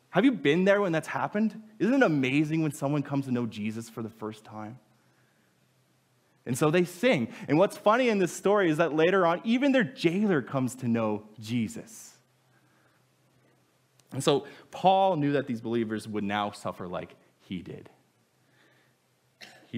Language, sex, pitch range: English, male, 110-150 Hz